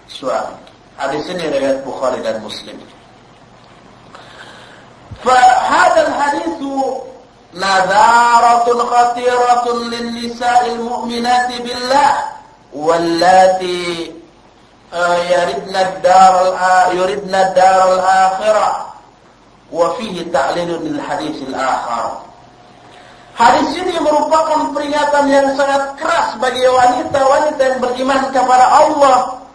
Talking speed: 55 wpm